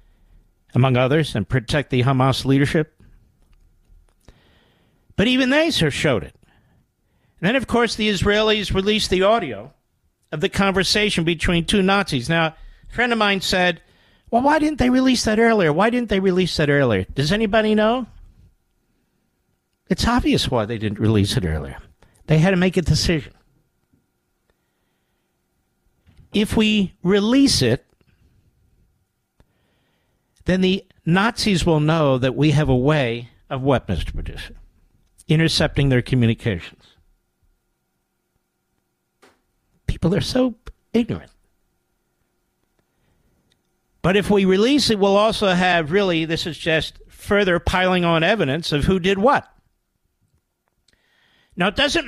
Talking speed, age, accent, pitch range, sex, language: 130 wpm, 50-69, American, 130-210 Hz, male, English